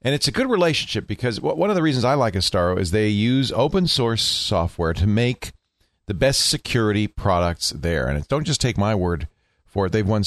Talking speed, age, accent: 210 wpm, 40-59, American